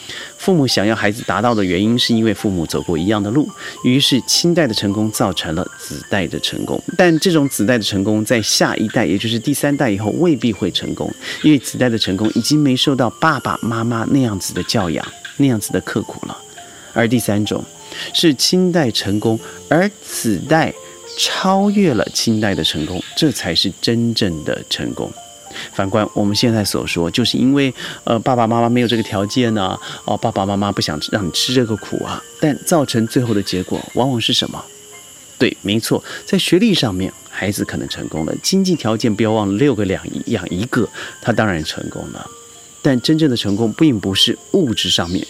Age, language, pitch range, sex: 40-59, Chinese, 105-140 Hz, male